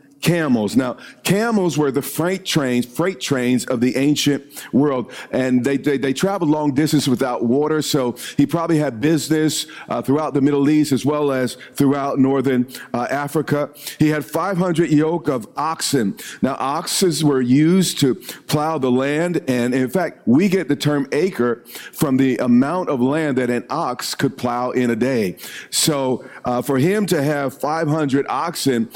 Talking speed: 170 wpm